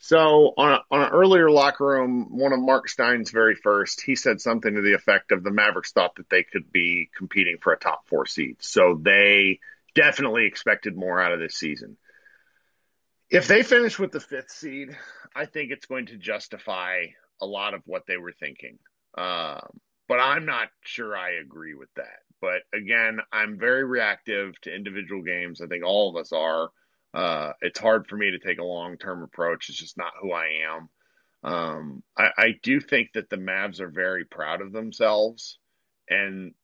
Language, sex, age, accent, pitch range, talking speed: English, male, 40-59, American, 100-140 Hz, 190 wpm